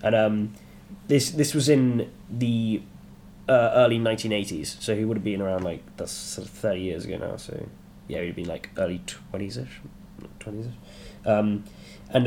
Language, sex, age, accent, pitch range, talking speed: English, male, 10-29, British, 105-125 Hz, 185 wpm